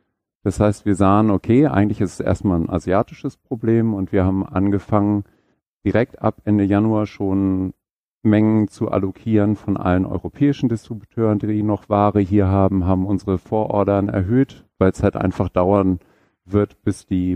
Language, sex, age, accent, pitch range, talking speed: German, male, 50-69, German, 90-105 Hz, 155 wpm